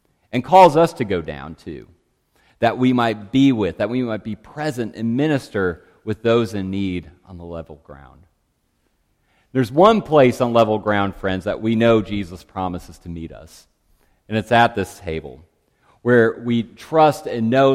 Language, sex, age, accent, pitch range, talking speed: English, male, 40-59, American, 95-135 Hz, 175 wpm